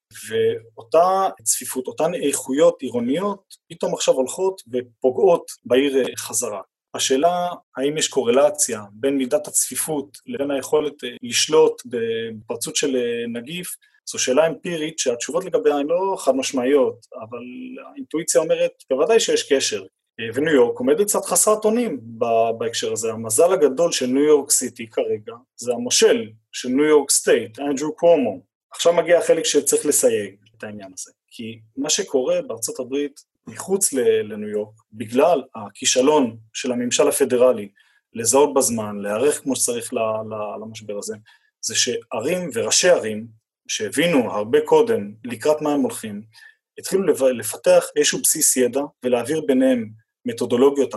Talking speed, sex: 130 wpm, male